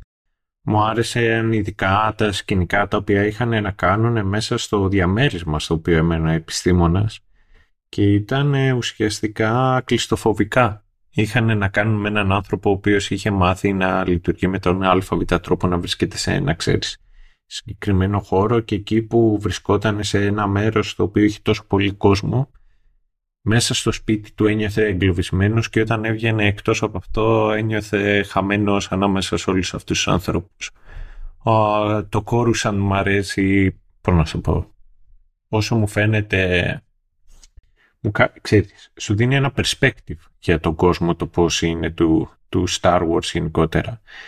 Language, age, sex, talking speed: Greek, 20-39, male, 145 wpm